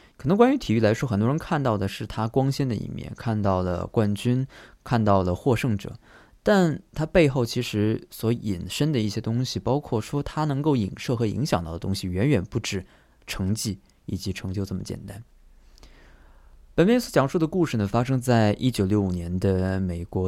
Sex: male